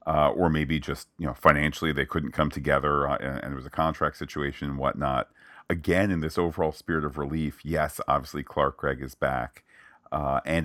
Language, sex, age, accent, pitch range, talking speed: English, male, 40-59, American, 75-105 Hz, 205 wpm